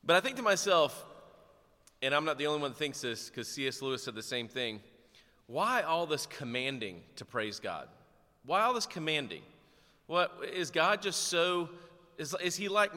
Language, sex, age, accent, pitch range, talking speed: English, male, 30-49, American, 125-170 Hz, 190 wpm